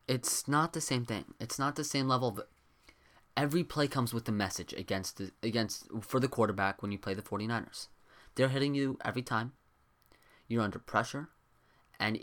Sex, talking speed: male, 180 wpm